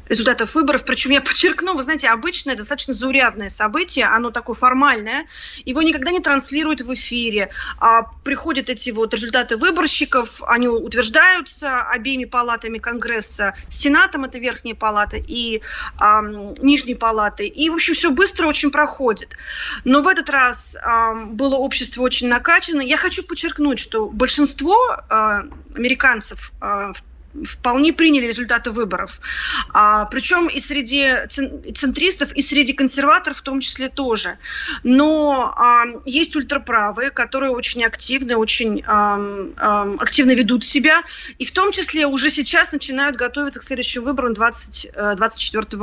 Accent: native